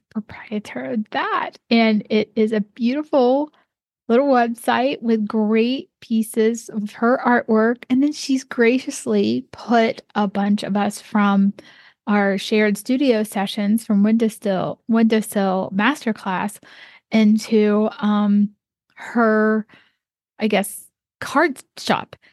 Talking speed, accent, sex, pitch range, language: 110 wpm, American, female, 210-255 Hz, English